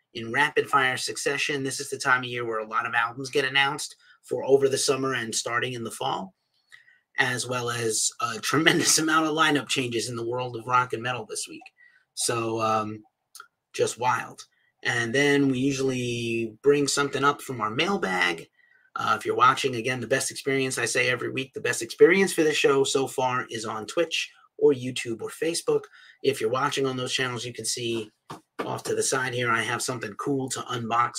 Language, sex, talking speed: English, male, 200 wpm